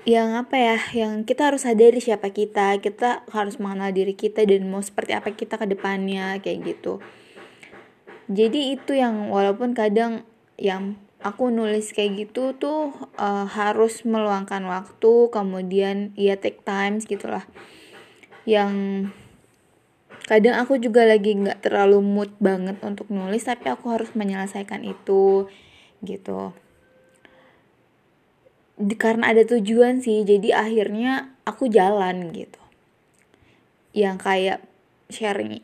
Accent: native